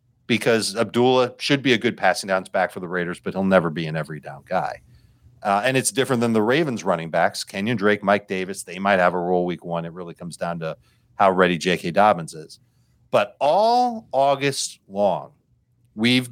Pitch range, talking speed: 105-140 Hz, 200 wpm